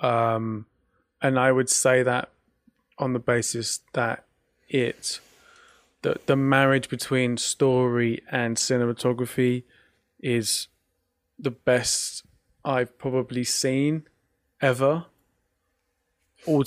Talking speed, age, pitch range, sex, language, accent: 95 wpm, 20-39, 120-140 Hz, male, English, British